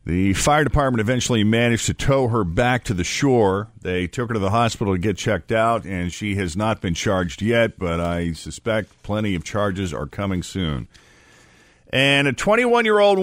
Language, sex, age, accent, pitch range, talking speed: English, male, 50-69, American, 110-155 Hz, 185 wpm